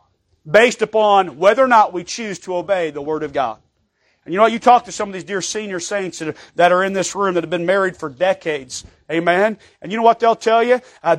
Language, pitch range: English, 175-235 Hz